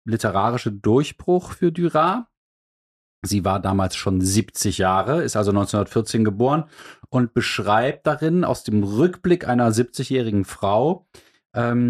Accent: German